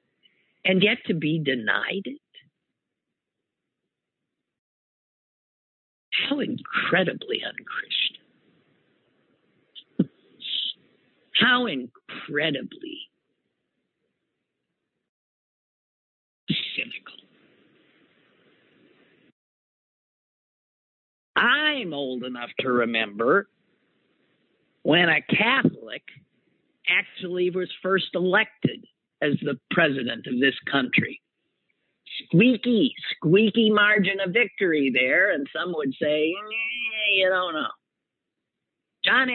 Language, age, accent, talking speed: English, 50-69, American, 65 wpm